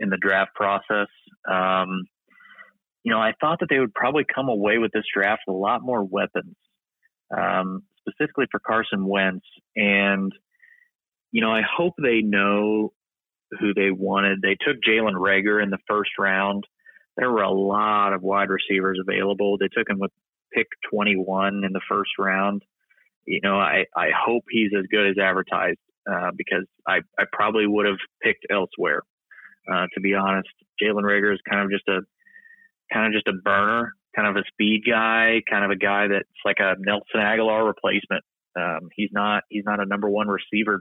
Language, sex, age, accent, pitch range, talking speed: English, male, 30-49, American, 100-110 Hz, 180 wpm